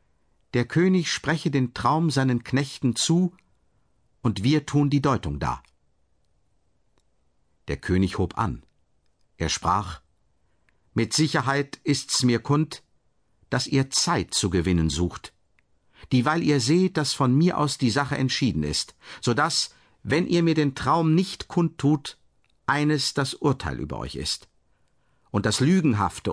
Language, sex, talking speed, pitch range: German, male, 140 wpm, 105-150 Hz